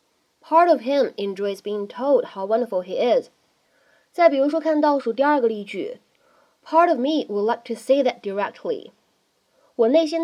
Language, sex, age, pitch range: Chinese, female, 10-29, 215-310 Hz